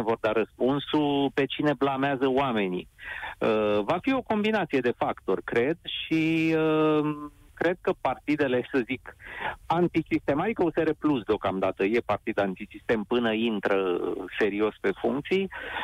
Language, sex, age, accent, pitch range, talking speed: Romanian, male, 30-49, native, 115-155 Hz, 125 wpm